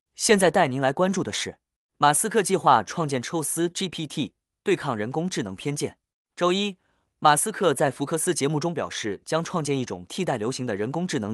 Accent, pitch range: native, 130-185 Hz